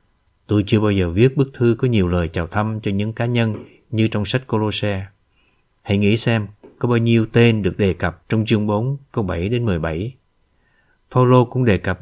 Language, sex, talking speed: Vietnamese, male, 195 wpm